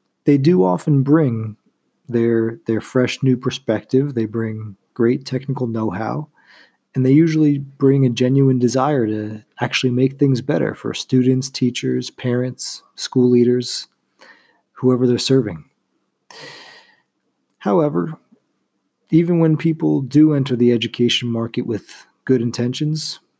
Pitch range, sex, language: 115-140 Hz, male, English